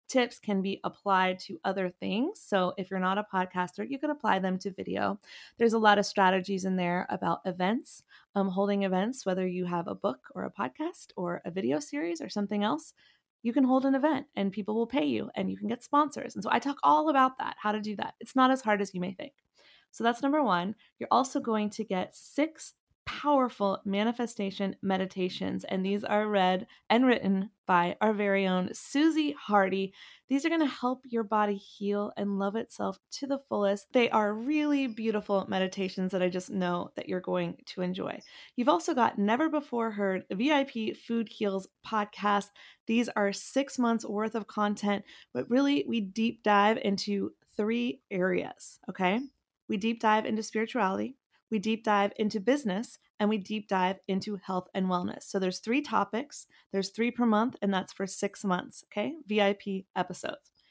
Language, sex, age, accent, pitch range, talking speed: English, female, 20-39, American, 195-245 Hz, 190 wpm